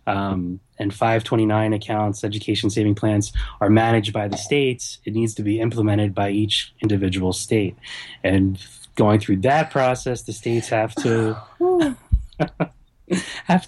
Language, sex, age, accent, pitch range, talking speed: English, male, 20-39, American, 95-115 Hz, 135 wpm